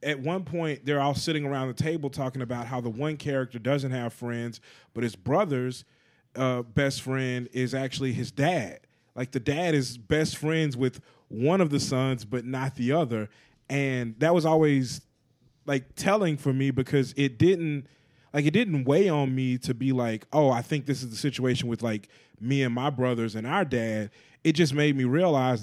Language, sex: English, male